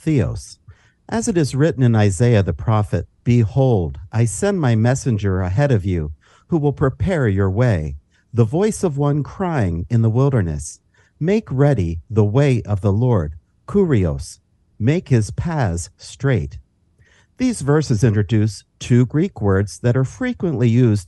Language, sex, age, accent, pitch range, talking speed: English, male, 50-69, American, 100-140 Hz, 150 wpm